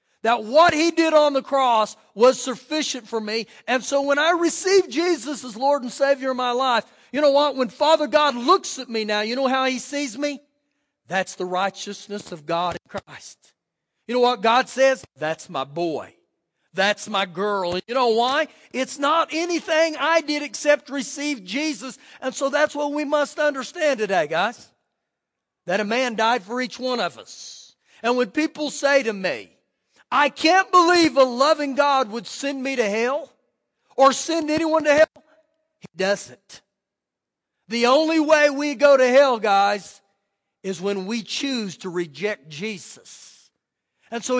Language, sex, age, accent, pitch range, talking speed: English, male, 40-59, American, 235-300 Hz, 175 wpm